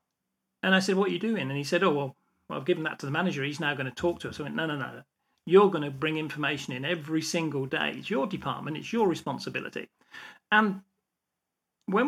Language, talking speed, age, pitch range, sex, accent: English, 240 wpm, 40-59, 155-200 Hz, male, British